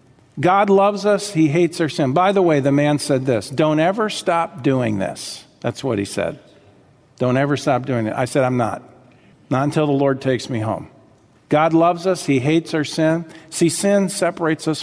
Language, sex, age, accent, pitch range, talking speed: English, male, 50-69, American, 130-175 Hz, 200 wpm